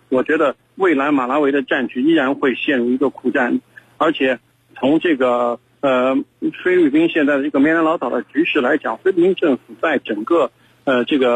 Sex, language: male, Chinese